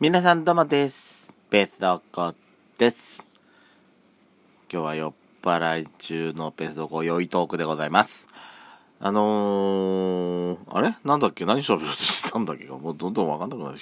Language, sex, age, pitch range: Japanese, male, 40-59, 80-100 Hz